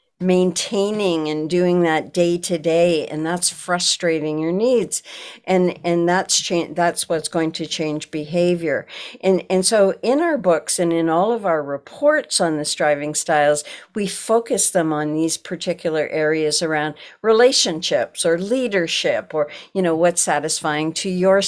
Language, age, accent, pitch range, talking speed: English, 60-79, American, 155-185 Hz, 150 wpm